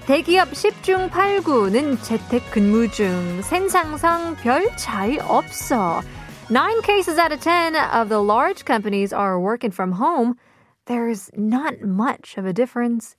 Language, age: Korean, 20-39